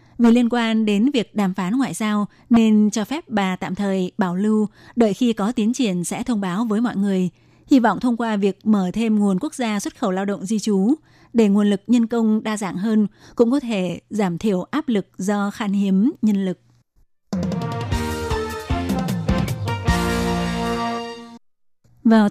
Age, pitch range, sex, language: 20-39, 195-230 Hz, female, Vietnamese